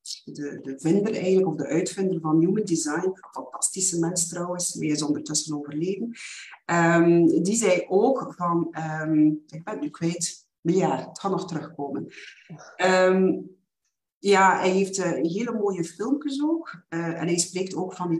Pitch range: 165-225 Hz